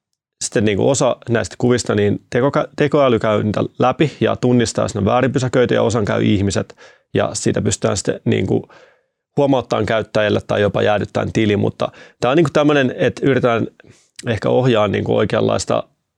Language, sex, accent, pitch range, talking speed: Finnish, male, native, 105-125 Hz, 165 wpm